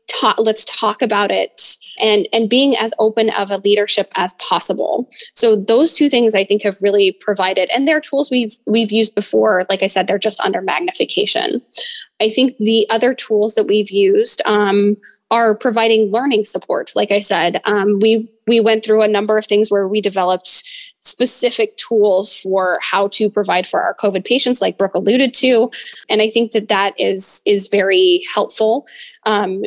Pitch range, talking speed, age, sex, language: 200-245 Hz, 180 wpm, 10-29, female, English